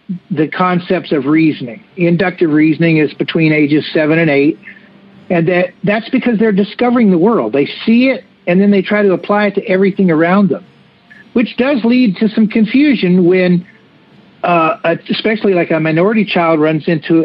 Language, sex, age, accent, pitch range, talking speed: English, male, 60-79, American, 165-210 Hz, 170 wpm